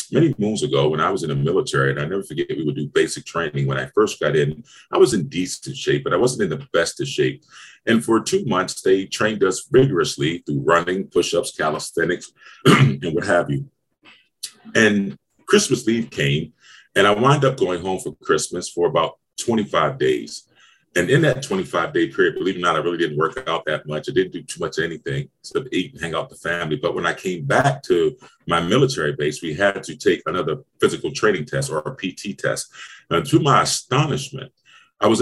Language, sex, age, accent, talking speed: English, male, 30-49, American, 215 wpm